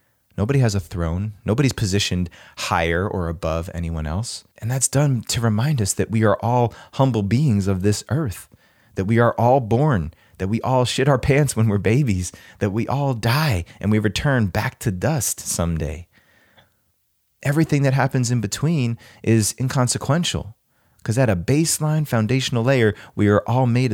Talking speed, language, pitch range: 170 wpm, English, 100-125 Hz